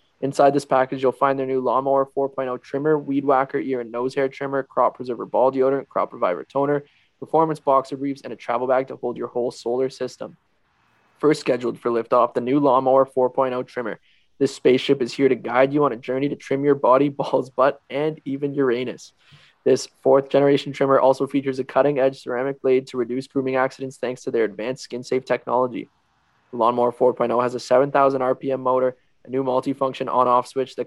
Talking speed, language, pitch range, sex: 195 wpm, English, 125-135 Hz, male